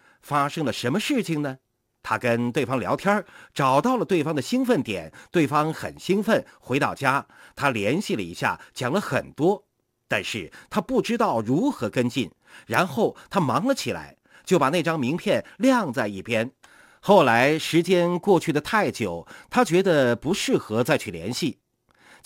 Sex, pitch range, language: male, 140-210 Hz, Chinese